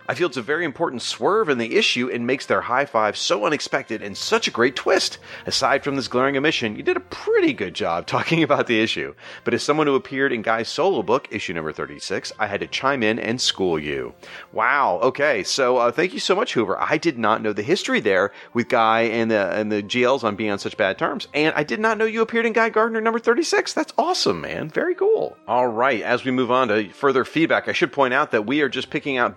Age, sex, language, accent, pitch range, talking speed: 30-49, male, English, American, 115-160 Hz, 245 wpm